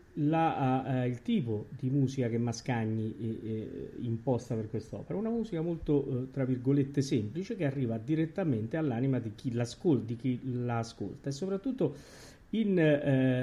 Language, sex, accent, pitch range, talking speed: Italian, male, native, 115-145 Hz, 145 wpm